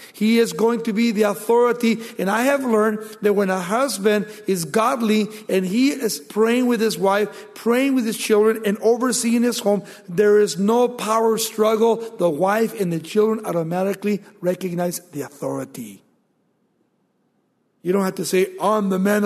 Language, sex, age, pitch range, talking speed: English, male, 60-79, 170-215 Hz, 170 wpm